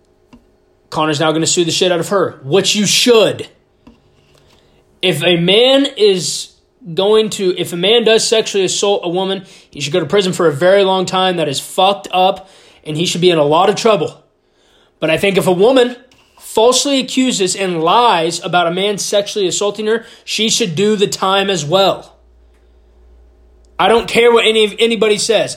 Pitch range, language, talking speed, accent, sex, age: 165-210 Hz, English, 190 wpm, American, male, 20-39